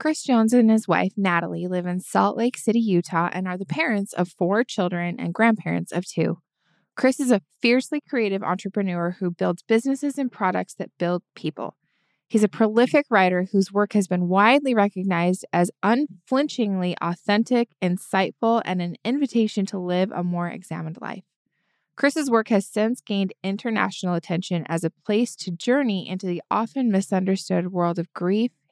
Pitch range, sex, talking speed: 175-220 Hz, female, 165 wpm